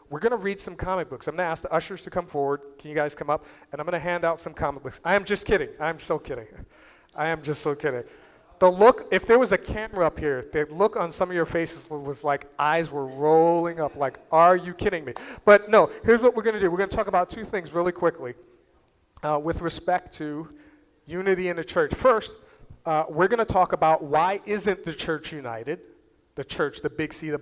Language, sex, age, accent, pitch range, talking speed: English, male, 40-59, American, 150-190 Hz, 245 wpm